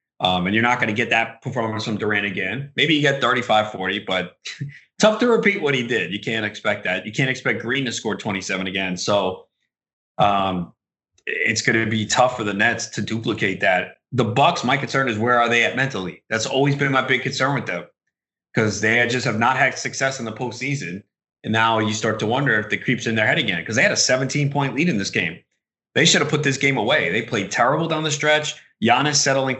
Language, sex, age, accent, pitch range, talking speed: English, male, 30-49, American, 110-140 Hz, 230 wpm